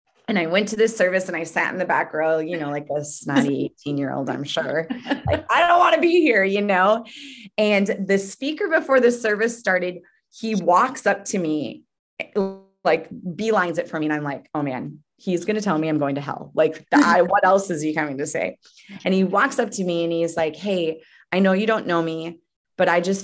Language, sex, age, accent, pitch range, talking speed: English, female, 20-39, American, 160-205 Hz, 235 wpm